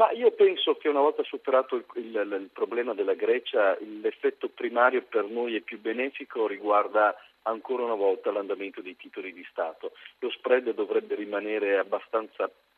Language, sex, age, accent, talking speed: Italian, male, 40-59, native, 160 wpm